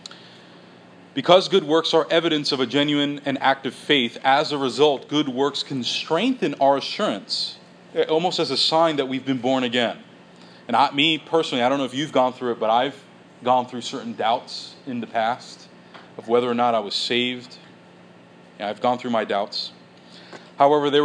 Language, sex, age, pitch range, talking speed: English, male, 30-49, 120-150 Hz, 180 wpm